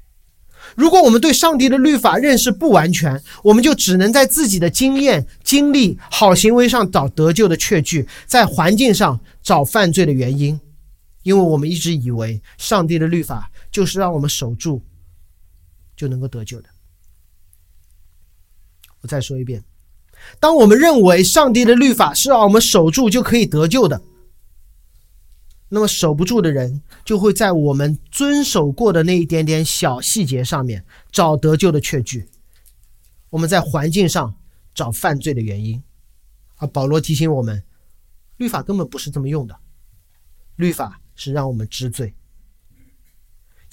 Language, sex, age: Chinese, male, 40-59